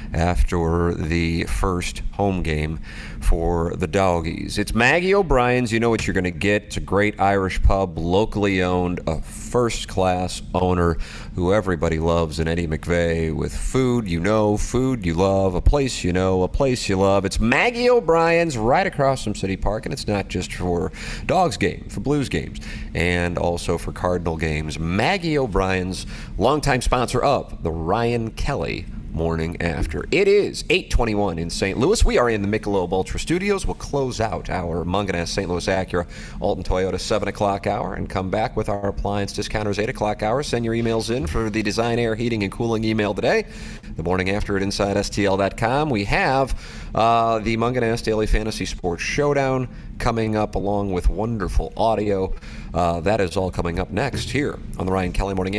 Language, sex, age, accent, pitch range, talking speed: English, male, 40-59, American, 90-115 Hz, 175 wpm